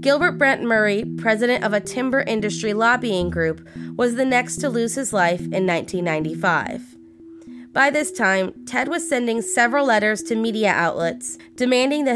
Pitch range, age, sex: 180-255 Hz, 30-49, female